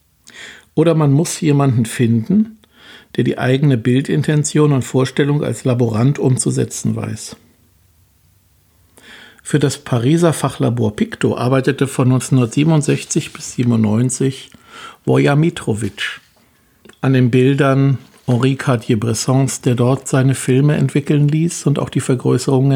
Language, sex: German, male